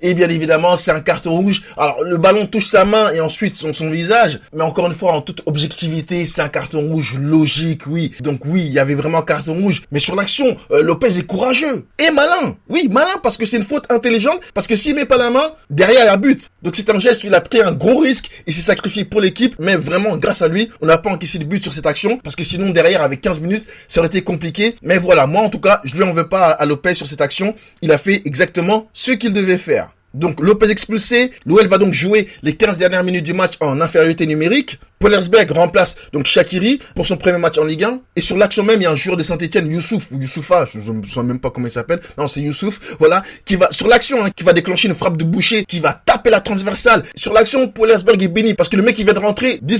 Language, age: French, 20-39